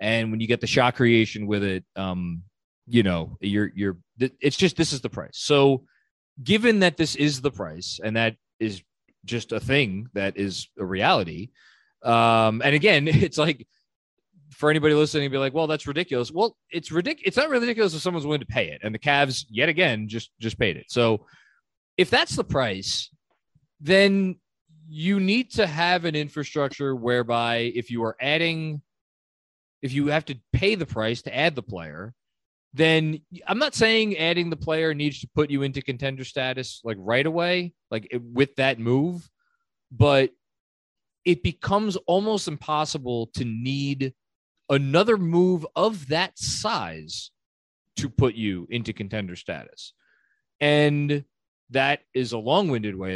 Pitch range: 115-160 Hz